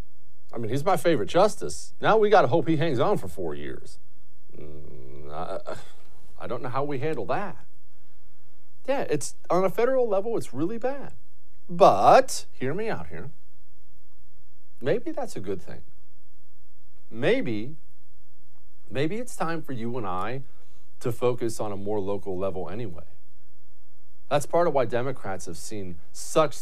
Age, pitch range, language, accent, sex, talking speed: 40-59, 120-200 Hz, English, American, male, 155 wpm